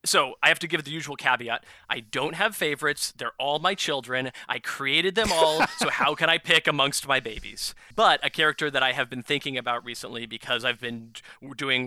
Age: 20-39